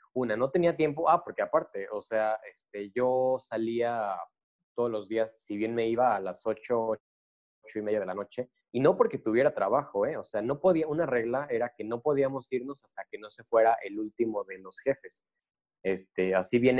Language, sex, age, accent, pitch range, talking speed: Spanish, male, 20-39, Mexican, 105-125 Hz, 205 wpm